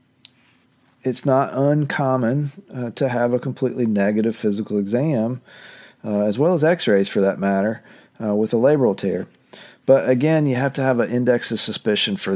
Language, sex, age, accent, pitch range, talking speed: English, male, 40-59, American, 105-130 Hz, 170 wpm